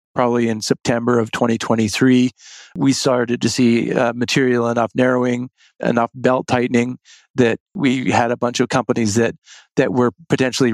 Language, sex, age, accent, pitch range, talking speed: English, male, 50-69, American, 115-125 Hz, 150 wpm